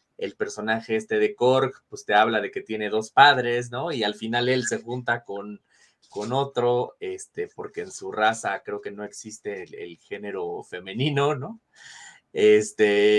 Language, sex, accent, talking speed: Spanish, male, Mexican, 175 wpm